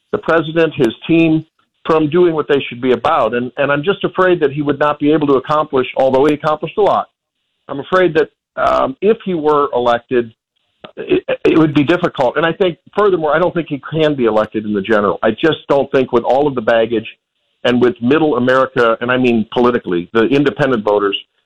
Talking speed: 215 wpm